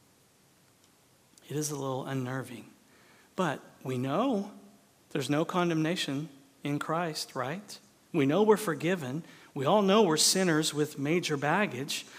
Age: 40-59